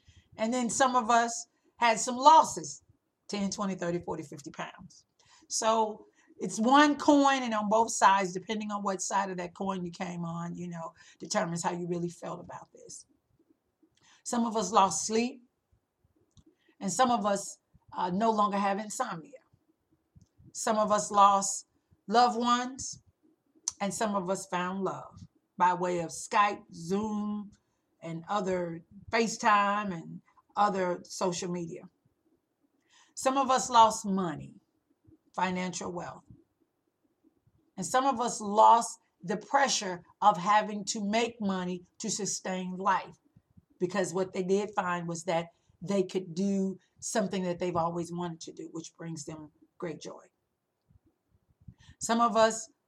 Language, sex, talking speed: English, female, 145 wpm